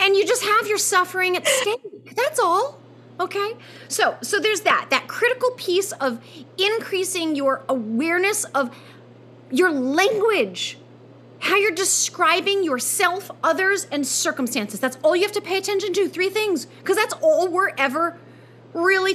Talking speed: 150 wpm